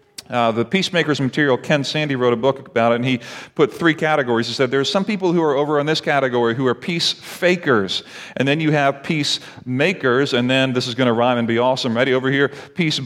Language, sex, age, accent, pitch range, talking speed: English, male, 40-59, American, 130-170 Hz, 235 wpm